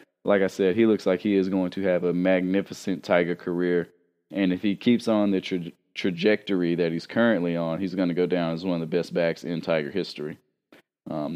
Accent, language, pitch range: American, English, 90-105 Hz